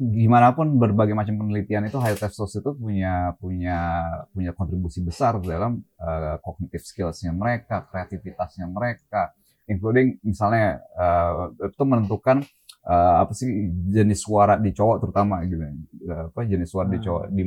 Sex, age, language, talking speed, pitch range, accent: male, 20-39, Indonesian, 140 wpm, 90-115 Hz, native